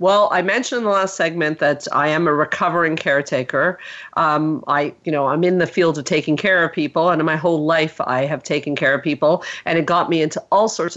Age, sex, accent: 50-69, female, American